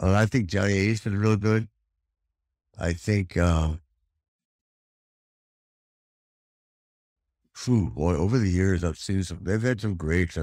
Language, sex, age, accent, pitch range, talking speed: English, male, 60-79, American, 75-95 Hz, 130 wpm